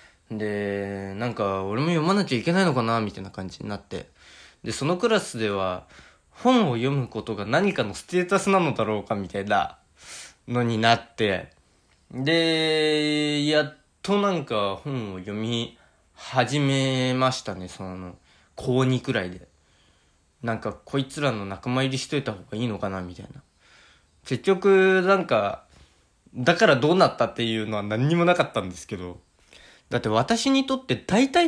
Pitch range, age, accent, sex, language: 100-155 Hz, 20-39, native, male, Japanese